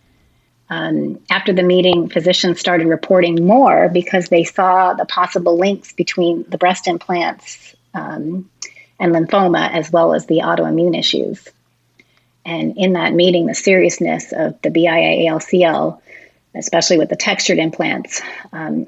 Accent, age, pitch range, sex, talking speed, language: American, 30-49, 165-185 Hz, female, 135 wpm, English